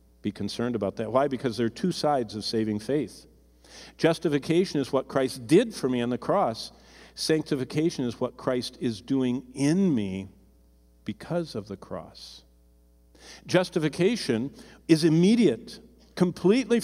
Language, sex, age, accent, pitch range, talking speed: English, male, 50-69, American, 105-165 Hz, 140 wpm